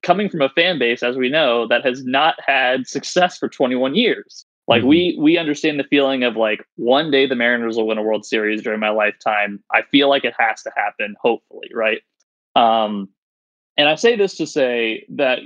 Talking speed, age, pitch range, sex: 205 wpm, 20-39, 110-140 Hz, male